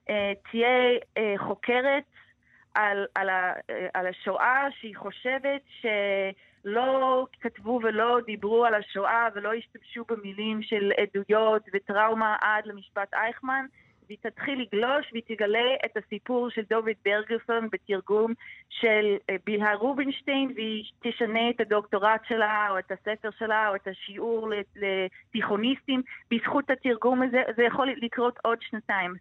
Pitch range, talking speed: 205-255 Hz, 120 wpm